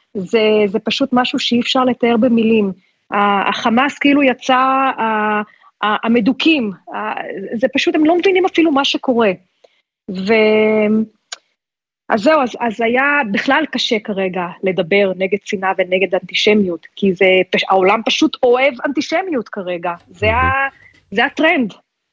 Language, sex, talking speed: Hebrew, female, 115 wpm